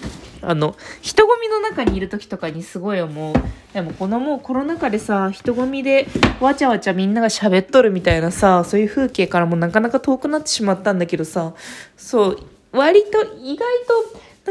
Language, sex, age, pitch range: Japanese, female, 20-39, 185-270 Hz